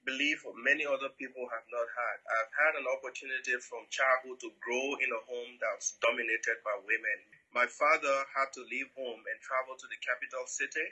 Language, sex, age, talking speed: English, male, 20-39, 200 wpm